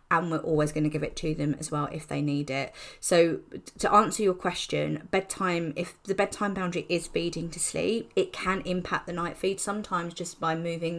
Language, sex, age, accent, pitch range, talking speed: English, female, 30-49, British, 155-190 Hz, 215 wpm